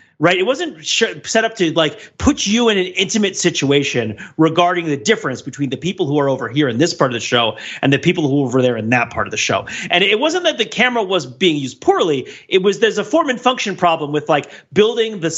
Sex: male